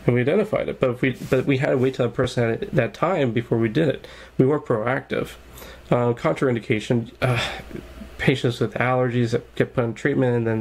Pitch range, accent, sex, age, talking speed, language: 115-130 Hz, American, male, 20-39, 215 wpm, English